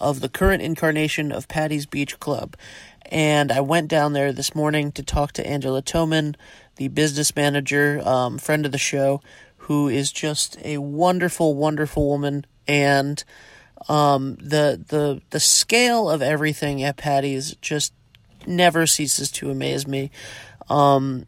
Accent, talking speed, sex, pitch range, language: American, 145 wpm, male, 140-155 Hz, English